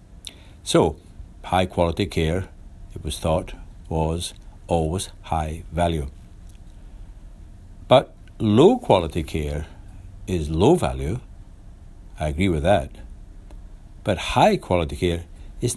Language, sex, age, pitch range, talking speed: English, male, 60-79, 80-100 Hz, 90 wpm